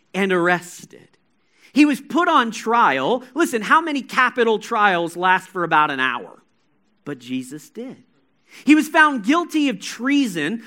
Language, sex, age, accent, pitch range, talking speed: English, male, 40-59, American, 195-280 Hz, 145 wpm